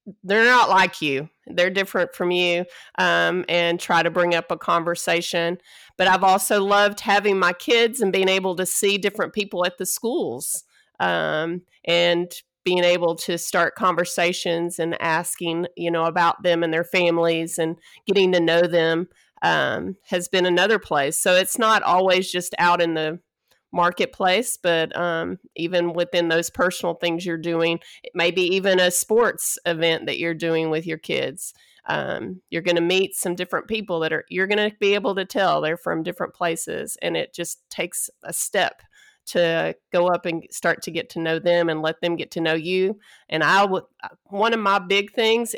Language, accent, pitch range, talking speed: English, American, 170-200 Hz, 185 wpm